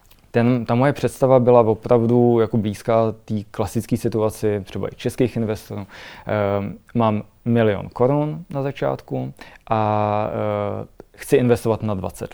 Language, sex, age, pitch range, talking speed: Czech, male, 20-39, 100-125 Hz, 120 wpm